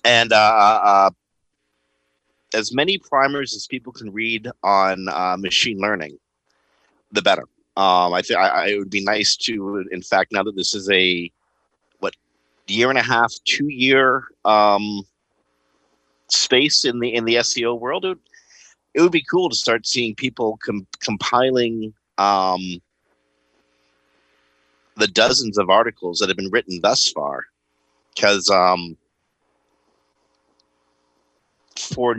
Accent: American